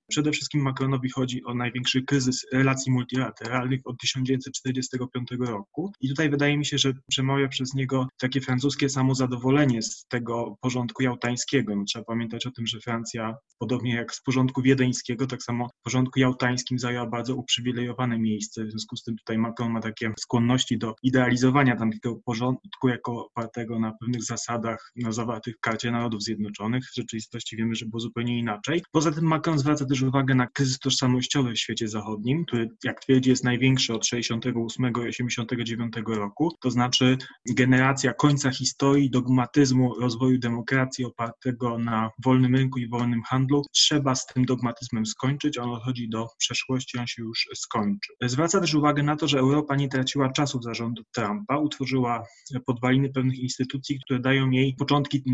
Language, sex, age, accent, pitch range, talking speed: Polish, male, 20-39, native, 115-135 Hz, 165 wpm